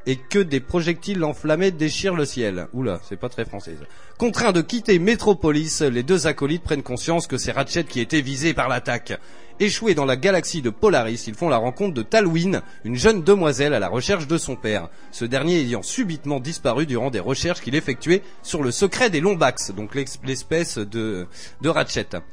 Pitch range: 125-170 Hz